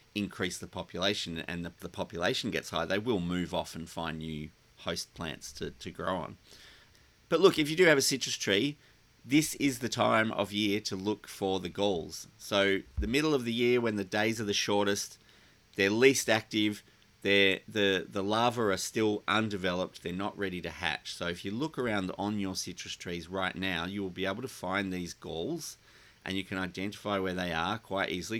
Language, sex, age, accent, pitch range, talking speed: English, male, 30-49, Australian, 90-110 Hz, 205 wpm